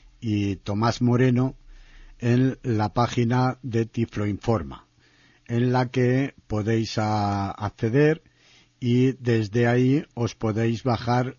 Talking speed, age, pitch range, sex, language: 100 wpm, 60-79, 105-125 Hz, male, Spanish